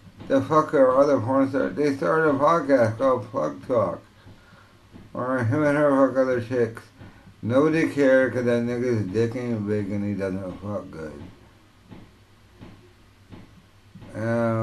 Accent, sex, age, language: American, male, 60-79, English